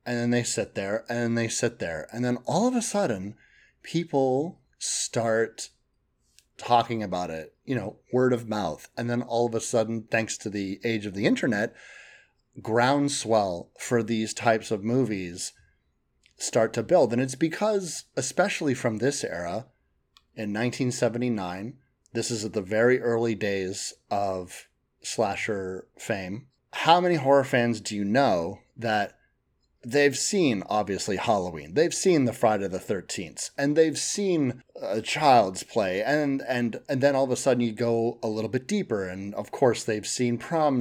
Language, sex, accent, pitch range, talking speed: English, male, American, 105-135 Hz, 160 wpm